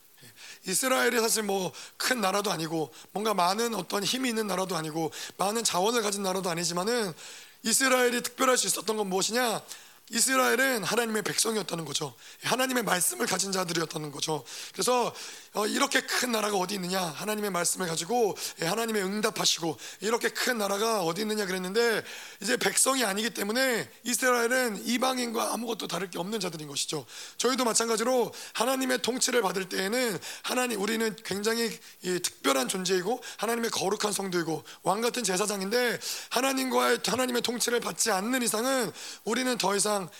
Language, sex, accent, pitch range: Korean, male, native, 185-235 Hz